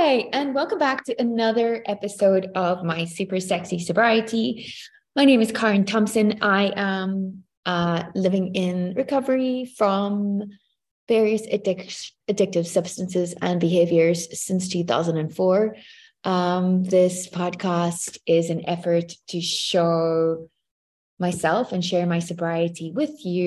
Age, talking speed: 20-39, 115 wpm